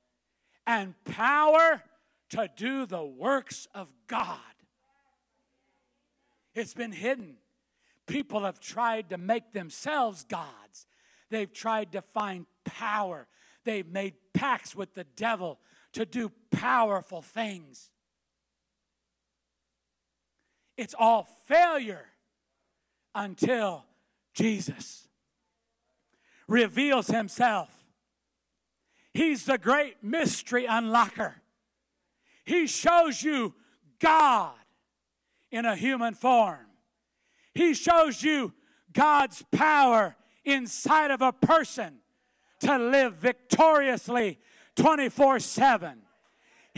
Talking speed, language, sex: 85 wpm, English, male